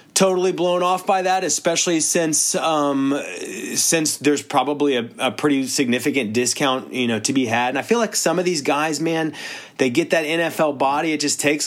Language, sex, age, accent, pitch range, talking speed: English, male, 30-49, American, 115-150 Hz, 195 wpm